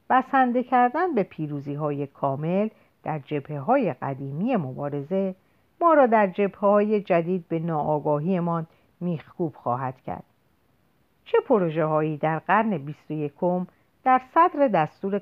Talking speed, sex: 120 wpm, female